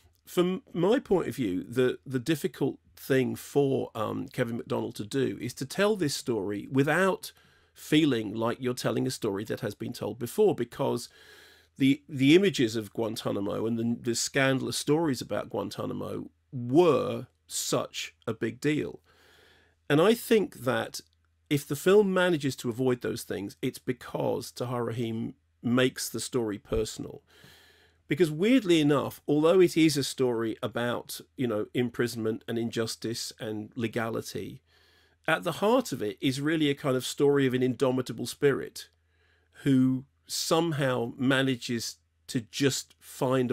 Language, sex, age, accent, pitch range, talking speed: English, male, 40-59, British, 115-145 Hz, 150 wpm